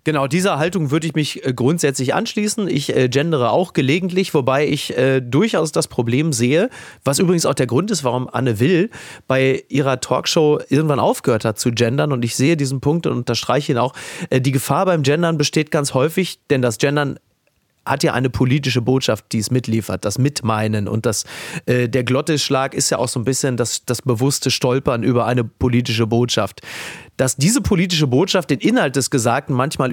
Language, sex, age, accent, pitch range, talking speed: German, male, 30-49, German, 125-155 Hz, 190 wpm